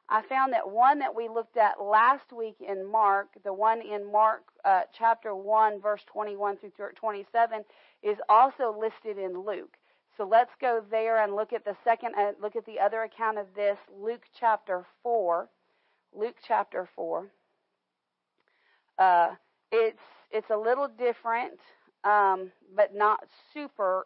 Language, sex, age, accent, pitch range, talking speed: English, female, 40-59, American, 195-235 Hz, 150 wpm